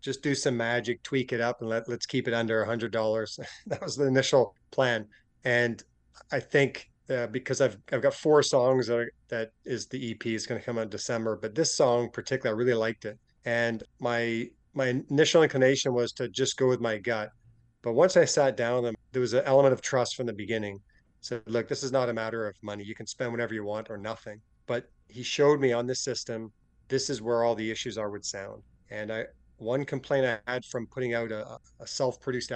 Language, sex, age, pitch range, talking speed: English, male, 30-49, 110-130 Hz, 230 wpm